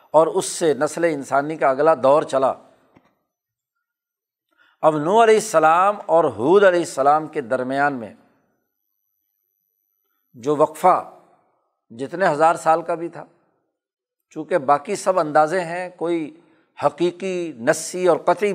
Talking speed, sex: 125 wpm, male